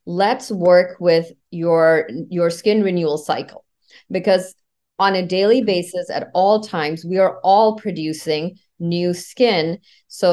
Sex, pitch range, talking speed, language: female, 165-200 Hz, 135 wpm, English